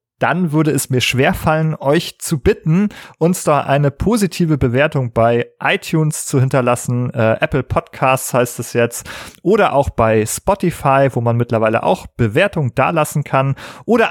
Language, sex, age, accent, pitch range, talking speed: German, male, 40-59, German, 120-155 Hz, 150 wpm